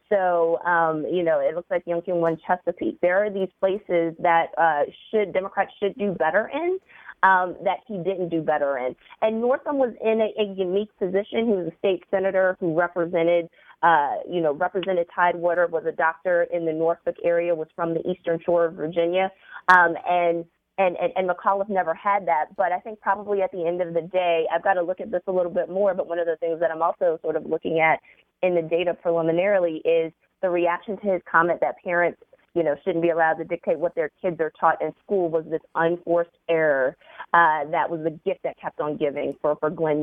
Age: 30-49